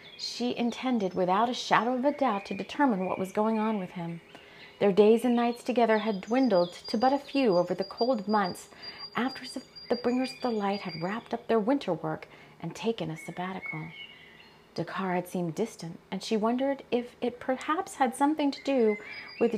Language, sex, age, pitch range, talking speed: English, female, 40-59, 185-255 Hz, 190 wpm